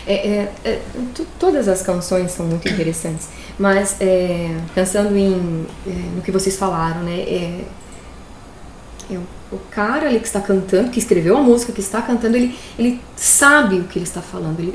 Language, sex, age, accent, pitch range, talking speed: Portuguese, female, 20-39, Brazilian, 185-245 Hz, 140 wpm